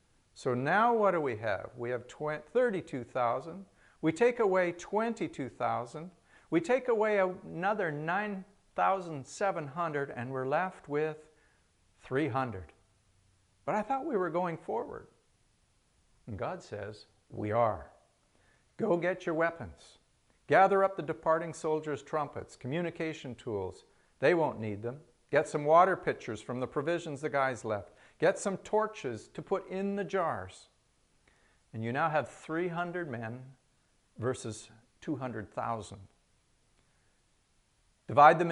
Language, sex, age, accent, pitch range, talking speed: English, male, 50-69, American, 115-170 Hz, 125 wpm